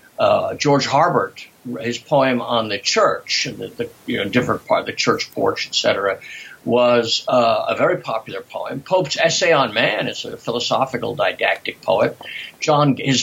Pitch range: 120-155 Hz